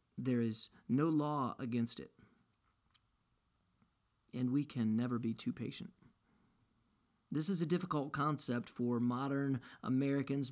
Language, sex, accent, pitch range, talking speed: English, male, American, 115-140 Hz, 120 wpm